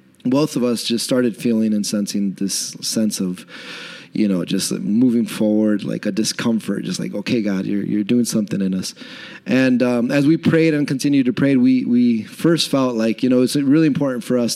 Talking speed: 205 wpm